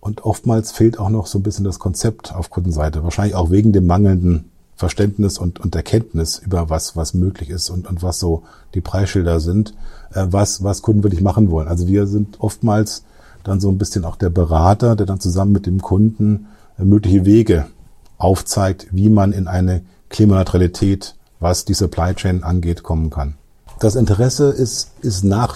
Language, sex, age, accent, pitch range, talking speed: German, male, 40-59, German, 90-110 Hz, 185 wpm